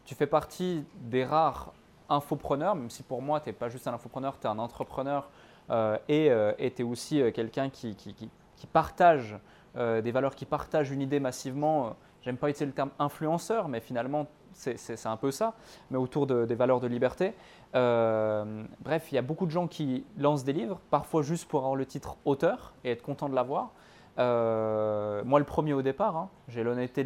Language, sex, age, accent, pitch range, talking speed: French, male, 20-39, French, 120-150 Hz, 210 wpm